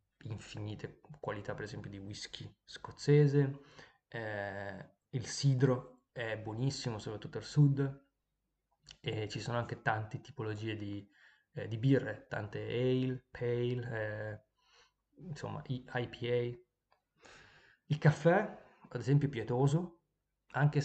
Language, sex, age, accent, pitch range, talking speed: Italian, male, 20-39, native, 115-145 Hz, 110 wpm